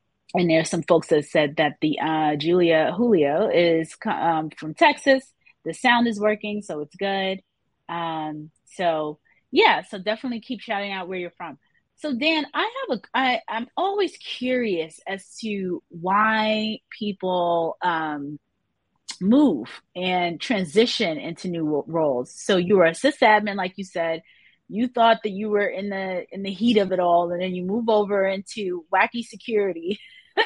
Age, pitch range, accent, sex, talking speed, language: 30-49, 175-245 Hz, American, female, 165 wpm, English